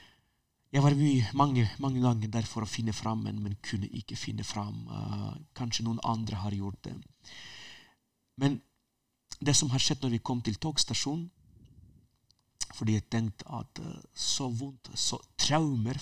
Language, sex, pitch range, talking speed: Danish, male, 110-130 Hz, 155 wpm